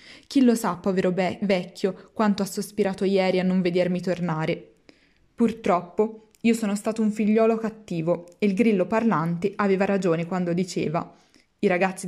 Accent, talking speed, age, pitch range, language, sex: native, 150 wpm, 20-39, 185-225 Hz, Italian, female